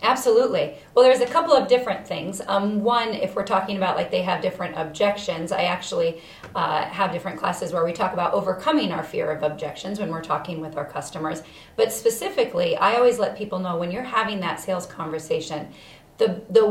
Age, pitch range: 40-59, 175-230 Hz